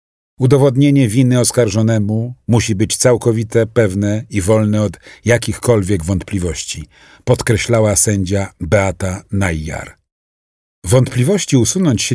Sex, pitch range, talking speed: male, 95-125 Hz, 95 wpm